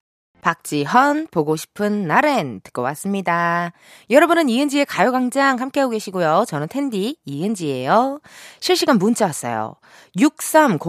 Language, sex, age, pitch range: Korean, female, 20-39, 185-295 Hz